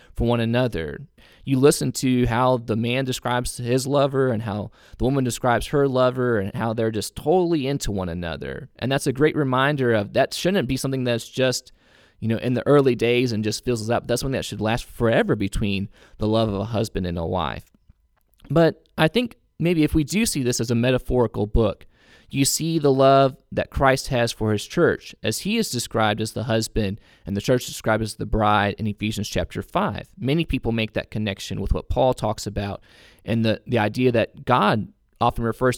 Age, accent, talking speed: 20-39, American, 210 wpm